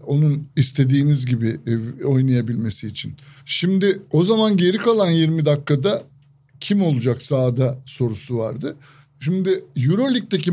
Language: Turkish